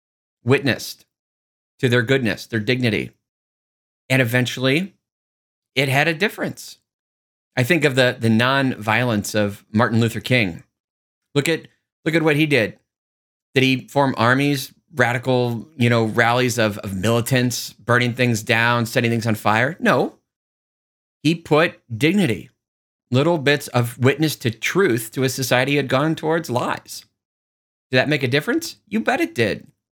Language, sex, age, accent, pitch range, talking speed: English, male, 30-49, American, 110-145 Hz, 150 wpm